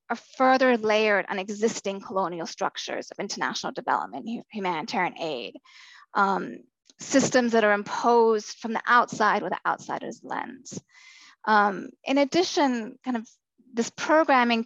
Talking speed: 125 wpm